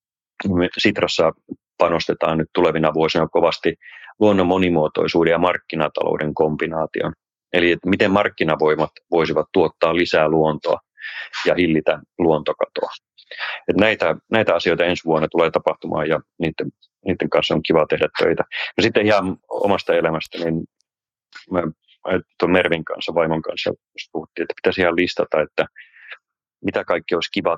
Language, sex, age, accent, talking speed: Finnish, male, 30-49, native, 125 wpm